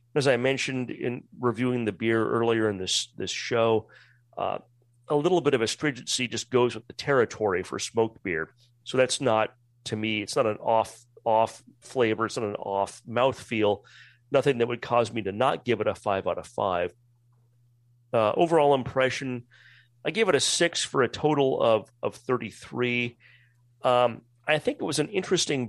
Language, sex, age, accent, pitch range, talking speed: English, male, 40-59, American, 120-145 Hz, 180 wpm